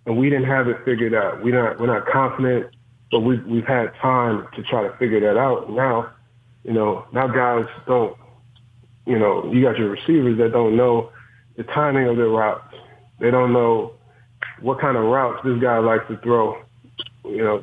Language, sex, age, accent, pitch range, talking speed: English, male, 30-49, American, 115-125 Hz, 195 wpm